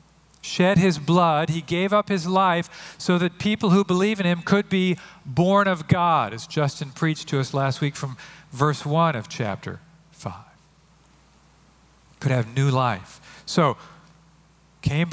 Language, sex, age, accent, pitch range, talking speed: English, male, 40-59, American, 150-180 Hz, 155 wpm